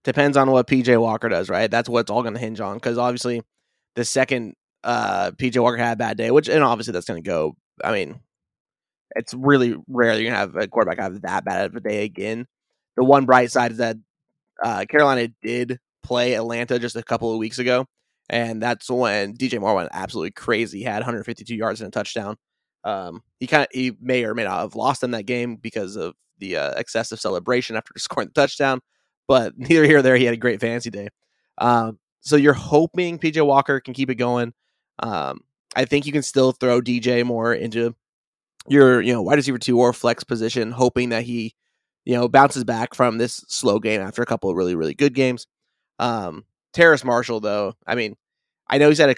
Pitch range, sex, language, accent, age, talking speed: 115-130 Hz, male, English, American, 20-39, 215 wpm